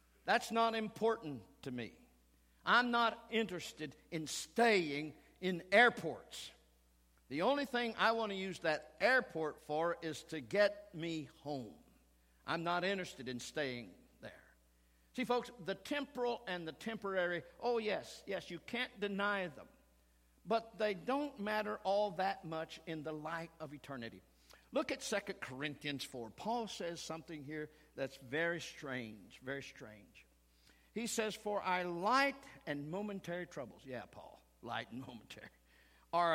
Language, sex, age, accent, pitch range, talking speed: English, male, 60-79, American, 145-215 Hz, 145 wpm